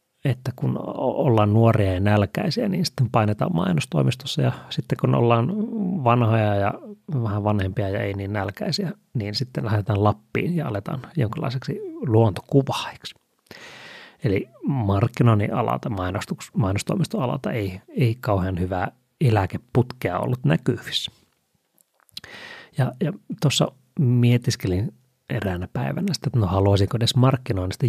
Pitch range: 105-145 Hz